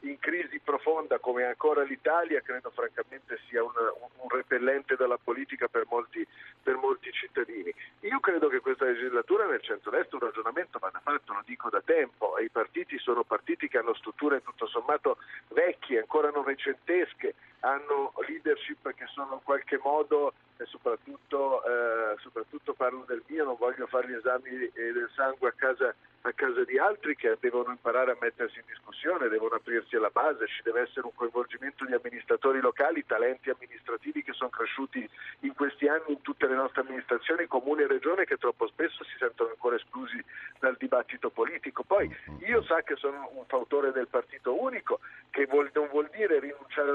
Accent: native